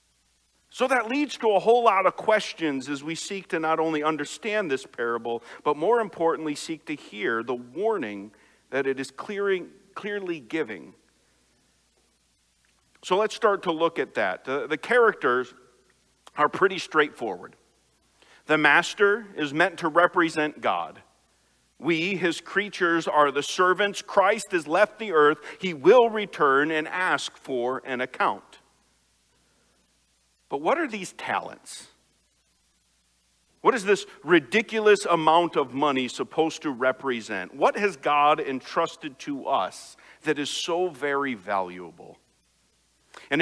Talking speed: 135 wpm